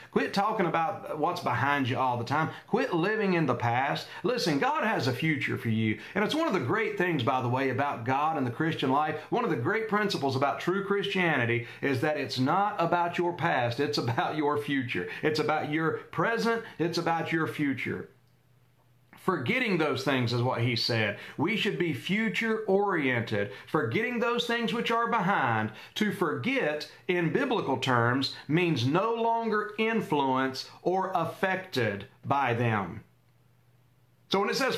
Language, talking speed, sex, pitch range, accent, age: English, 170 wpm, male, 130-200 Hz, American, 40-59